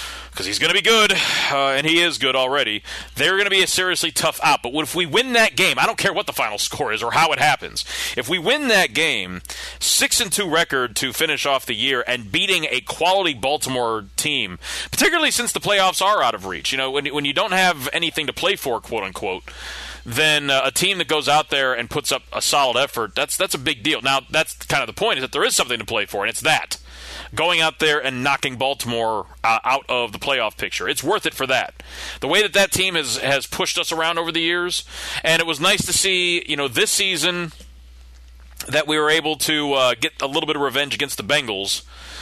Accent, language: American, English